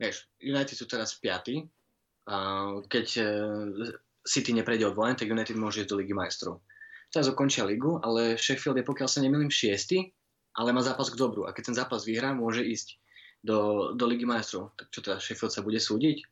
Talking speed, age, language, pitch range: 175 wpm, 20-39, Slovak, 105-120 Hz